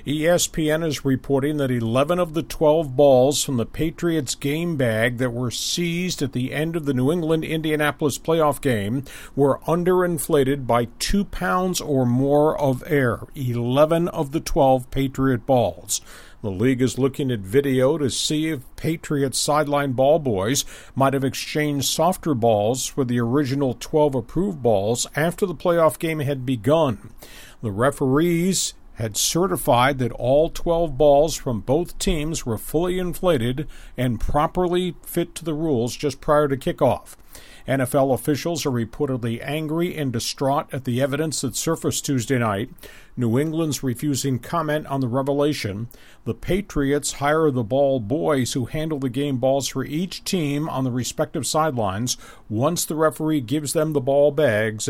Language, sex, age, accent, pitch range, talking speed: English, male, 50-69, American, 125-155 Hz, 155 wpm